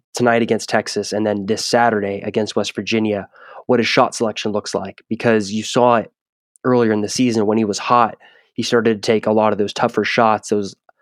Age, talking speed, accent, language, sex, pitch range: 20-39, 210 wpm, American, English, male, 105-120 Hz